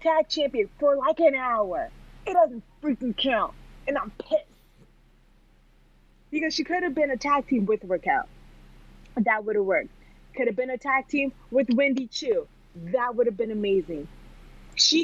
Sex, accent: female, American